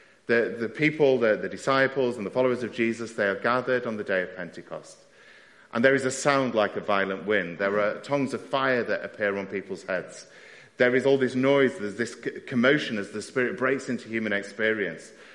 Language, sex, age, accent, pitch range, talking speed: English, male, 40-59, British, 110-140 Hz, 205 wpm